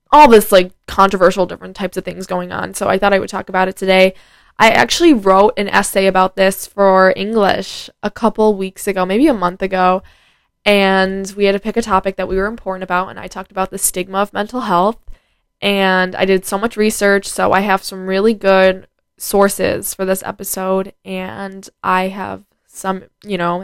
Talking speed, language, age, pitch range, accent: 200 wpm, English, 10-29, 185-210 Hz, American